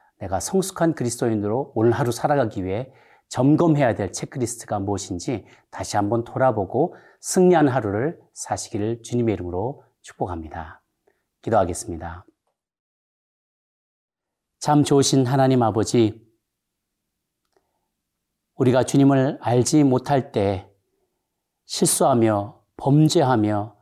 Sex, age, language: male, 40-59, Korean